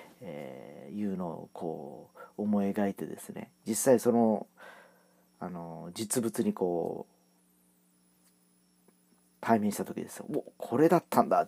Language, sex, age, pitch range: Japanese, male, 40-59, 95-165 Hz